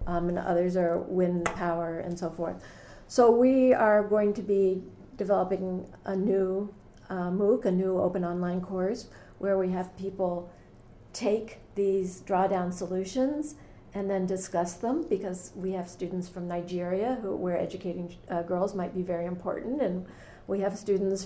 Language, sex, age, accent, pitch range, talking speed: English, female, 50-69, American, 180-210 Hz, 155 wpm